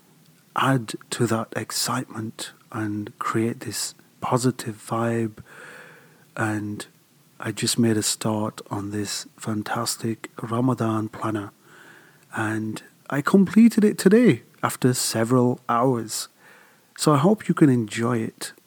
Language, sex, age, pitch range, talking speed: English, male, 40-59, 115-150 Hz, 115 wpm